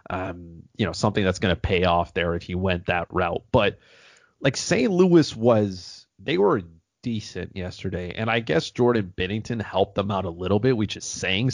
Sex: male